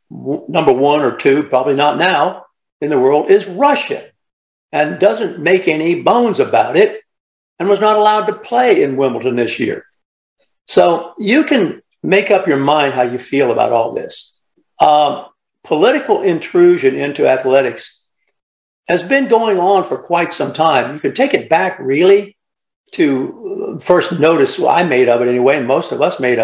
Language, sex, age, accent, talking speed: English, male, 60-79, American, 170 wpm